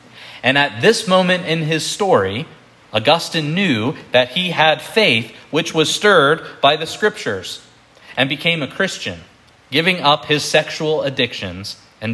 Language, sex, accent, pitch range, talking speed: English, male, American, 135-190 Hz, 145 wpm